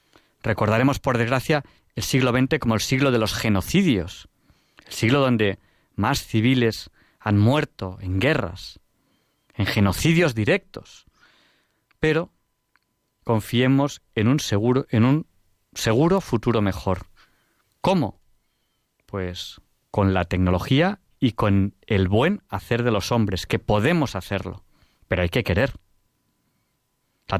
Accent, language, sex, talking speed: Spanish, Spanish, male, 115 wpm